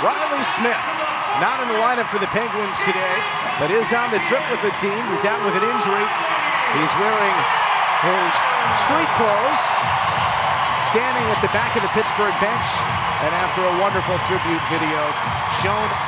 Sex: male